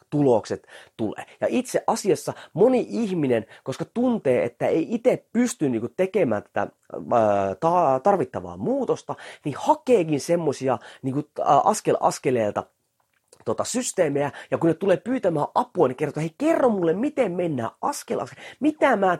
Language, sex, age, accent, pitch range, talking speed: Finnish, male, 30-49, native, 130-220 Hz, 145 wpm